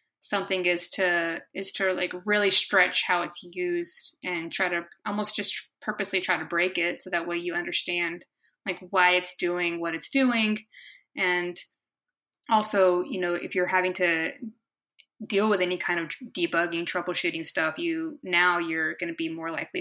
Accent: American